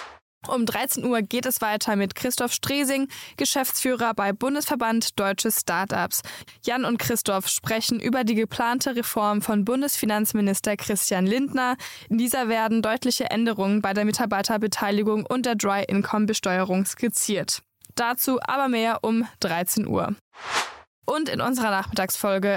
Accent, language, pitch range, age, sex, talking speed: German, German, 210-255 Hz, 10-29, female, 130 wpm